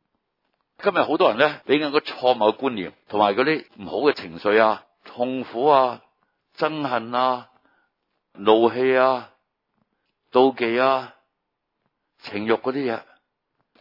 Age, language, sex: 60-79, Chinese, male